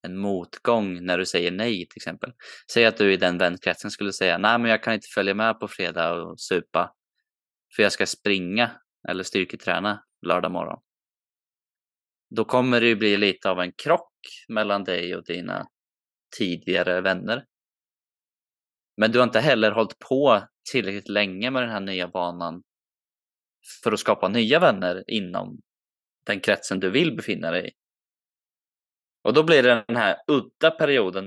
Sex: male